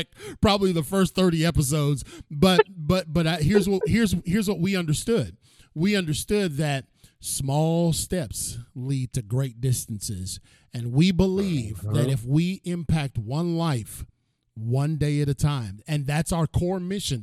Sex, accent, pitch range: male, American, 135-180 Hz